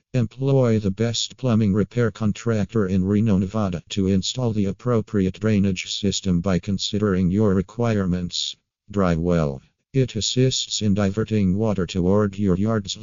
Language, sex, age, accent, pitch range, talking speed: English, male, 50-69, American, 95-110 Hz, 135 wpm